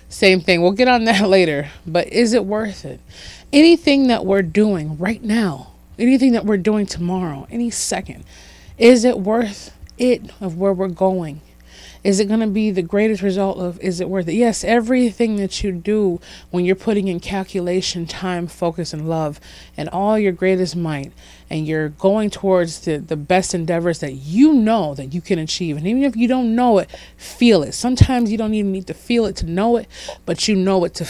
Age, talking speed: 30-49, 205 wpm